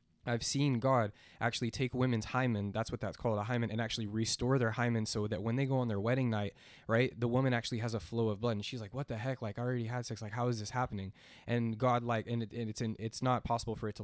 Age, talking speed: 20-39, 280 wpm